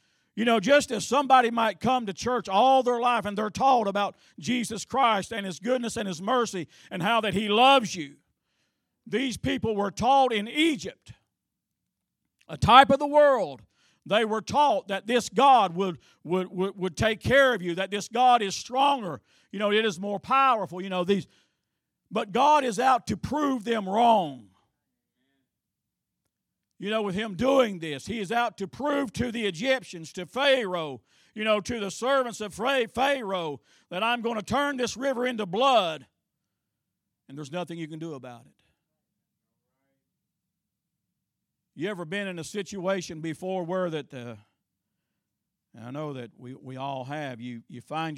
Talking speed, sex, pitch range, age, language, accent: 170 wpm, male, 160-245 Hz, 50-69, English, American